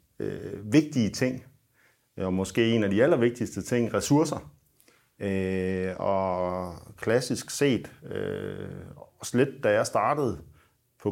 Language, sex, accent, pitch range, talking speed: Danish, male, native, 90-120 Hz, 105 wpm